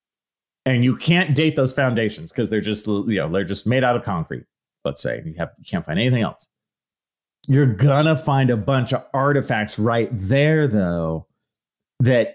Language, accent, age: English, American, 30-49